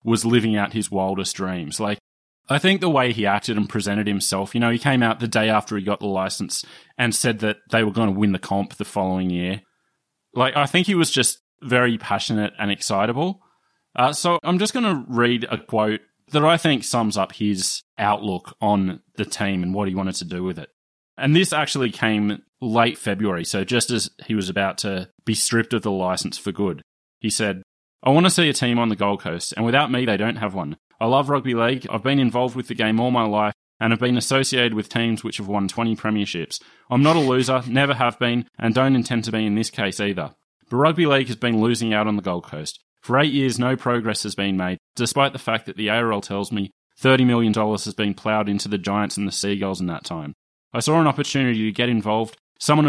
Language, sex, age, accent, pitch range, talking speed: English, male, 20-39, Australian, 100-125 Hz, 235 wpm